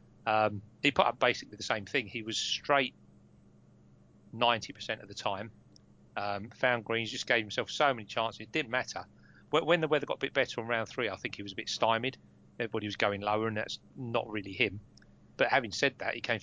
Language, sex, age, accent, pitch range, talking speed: English, male, 30-49, British, 95-120 Hz, 215 wpm